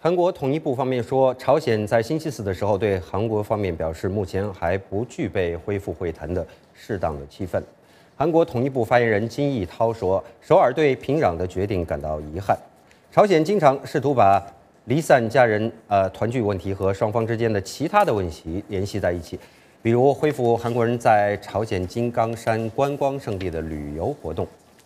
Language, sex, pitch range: English, male, 95-125 Hz